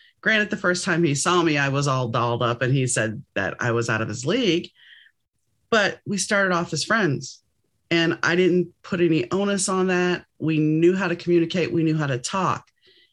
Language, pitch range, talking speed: English, 130-185 Hz, 210 wpm